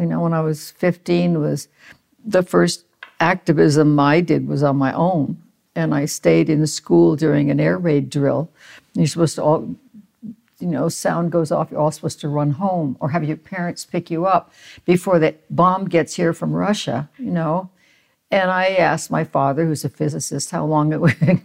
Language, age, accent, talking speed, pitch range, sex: English, 60-79, American, 195 wpm, 150-195 Hz, female